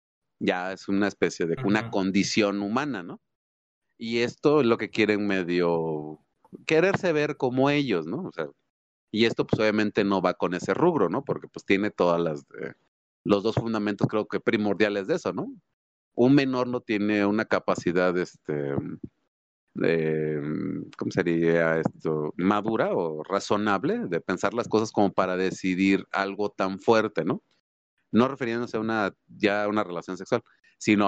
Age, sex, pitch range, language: 30-49, male, 90-115 Hz, Spanish